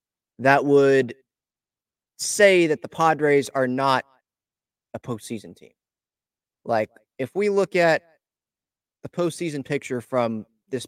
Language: English